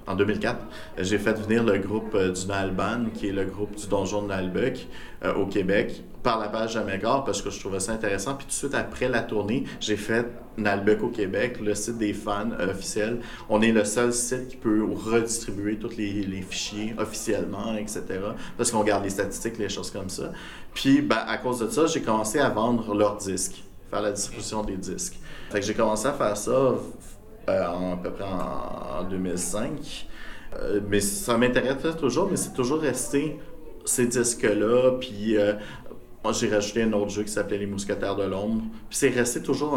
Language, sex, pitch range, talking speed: English, male, 100-120 Hz, 195 wpm